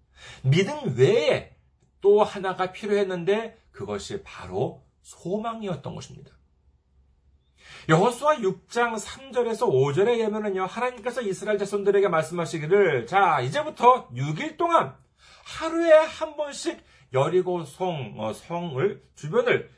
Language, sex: Korean, male